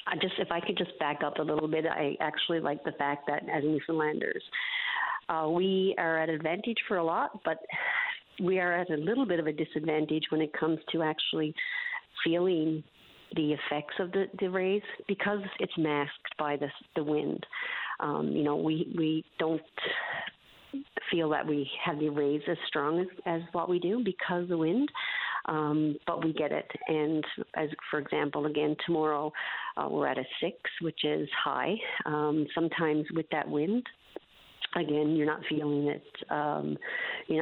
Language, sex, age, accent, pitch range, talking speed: English, female, 50-69, American, 150-180 Hz, 175 wpm